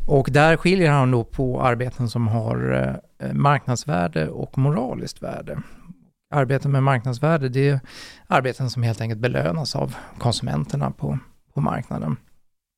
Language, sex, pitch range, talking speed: Swedish, male, 115-140 Hz, 130 wpm